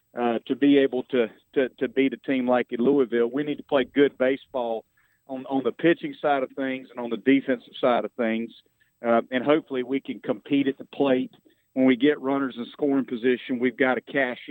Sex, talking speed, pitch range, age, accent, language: male, 220 wpm, 115-130 Hz, 40-59, American, English